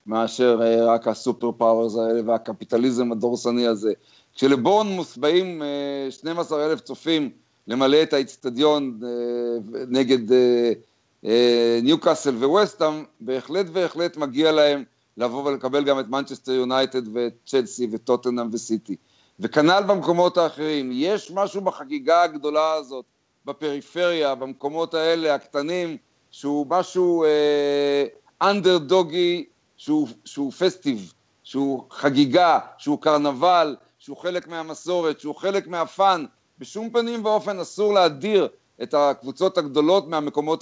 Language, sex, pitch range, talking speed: Hebrew, male, 135-180 Hz, 105 wpm